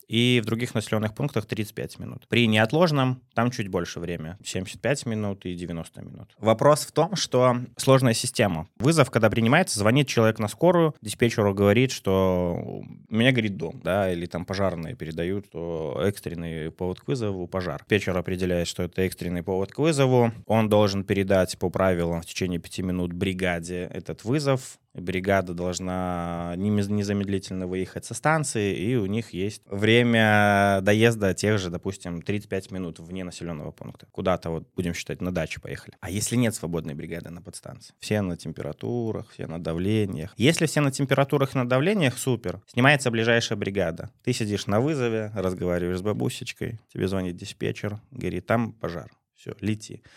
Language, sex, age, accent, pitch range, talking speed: Russian, male, 20-39, native, 90-120 Hz, 160 wpm